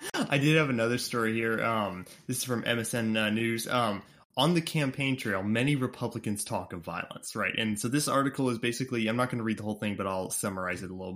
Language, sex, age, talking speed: English, male, 20-39, 235 wpm